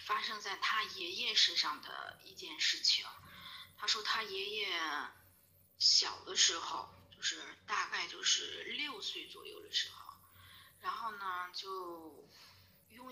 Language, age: Chinese, 20-39